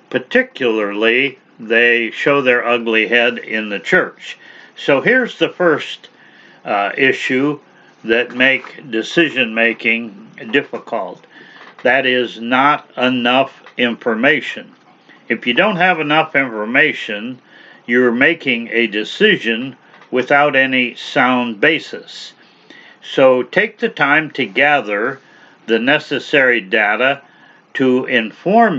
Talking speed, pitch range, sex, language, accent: 100 wpm, 120-155 Hz, male, English, American